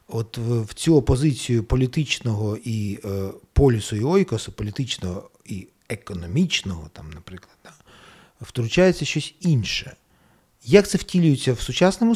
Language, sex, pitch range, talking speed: Ukrainian, male, 105-155 Hz, 110 wpm